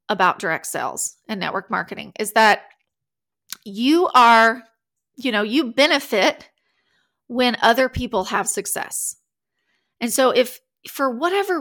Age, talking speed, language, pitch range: 30-49, 125 wpm, English, 210-285 Hz